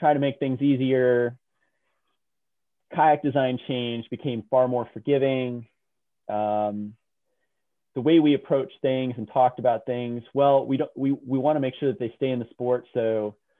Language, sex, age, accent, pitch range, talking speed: English, male, 30-49, American, 110-140 Hz, 170 wpm